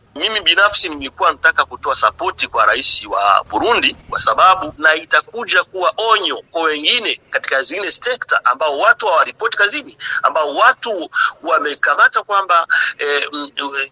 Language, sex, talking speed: Swahili, male, 130 wpm